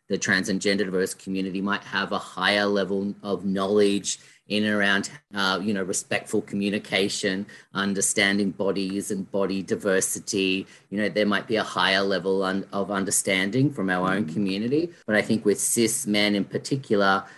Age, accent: 40-59, Australian